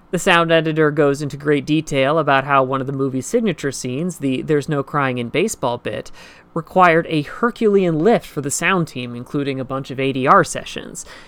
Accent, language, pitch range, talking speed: American, English, 140-180 Hz, 190 wpm